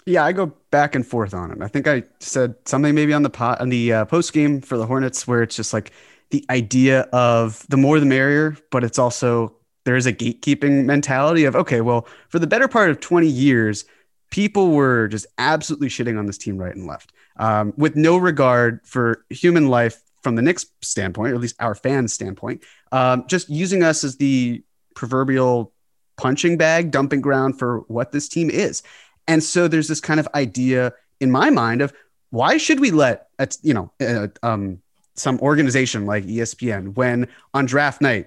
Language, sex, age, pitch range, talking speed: English, male, 30-49, 120-150 Hz, 200 wpm